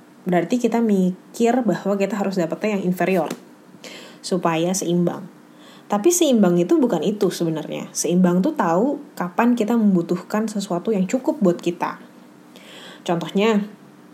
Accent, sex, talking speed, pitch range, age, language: native, female, 125 wpm, 175-235 Hz, 20-39, Indonesian